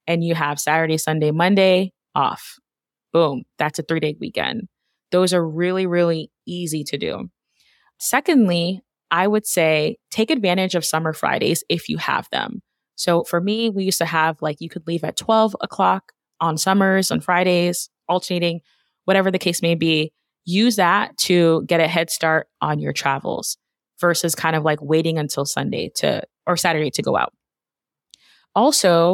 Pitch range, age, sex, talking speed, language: 160-190 Hz, 20-39, female, 165 wpm, English